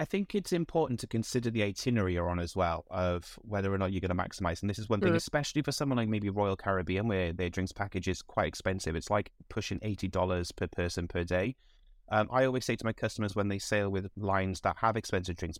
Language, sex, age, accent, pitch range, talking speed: English, male, 30-49, British, 95-110 Hz, 240 wpm